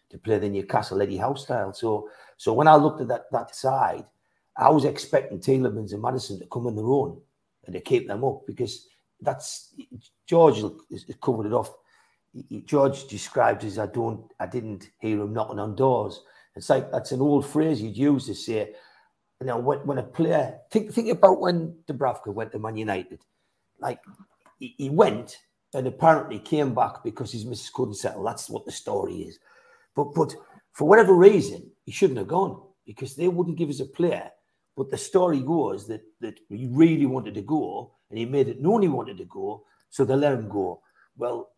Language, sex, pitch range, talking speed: English, male, 115-170 Hz, 195 wpm